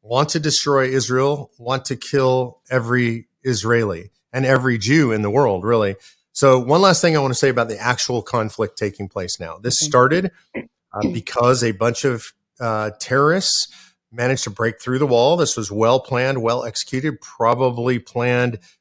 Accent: American